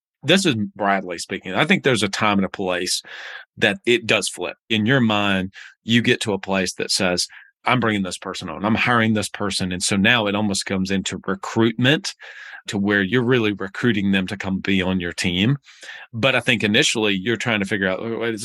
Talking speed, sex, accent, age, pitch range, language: 210 wpm, male, American, 40-59, 95-115 Hz, English